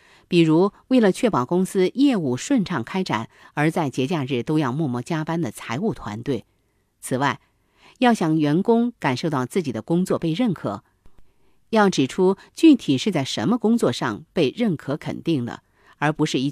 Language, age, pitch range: Chinese, 50-69, 130-210 Hz